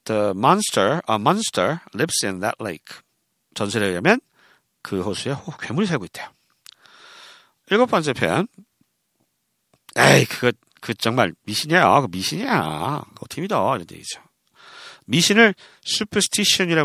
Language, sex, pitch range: Korean, male, 130-210 Hz